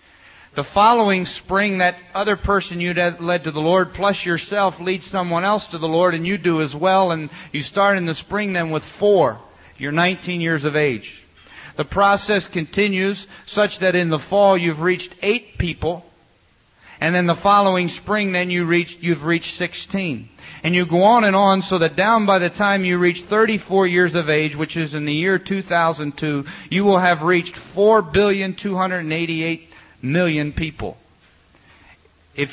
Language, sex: English, male